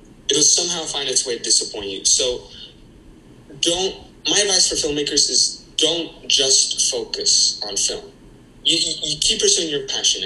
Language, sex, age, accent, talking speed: English, male, 20-39, American, 165 wpm